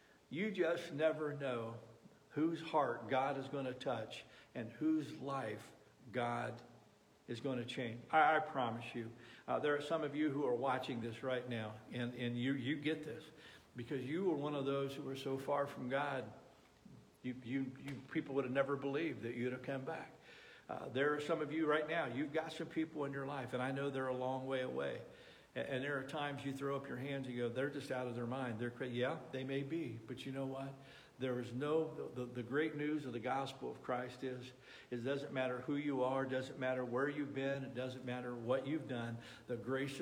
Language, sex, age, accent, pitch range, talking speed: English, male, 50-69, American, 125-145 Hz, 225 wpm